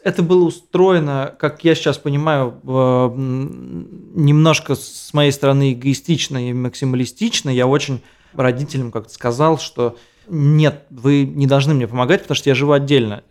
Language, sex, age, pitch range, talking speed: Russian, male, 20-39, 125-145 Hz, 140 wpm